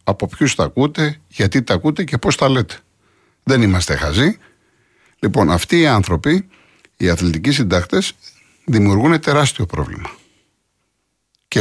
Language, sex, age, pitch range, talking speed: Greek, male, 50-69, 80-115 Hz, 130 wpm